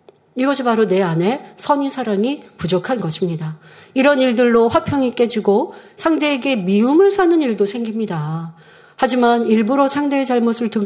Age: 40-59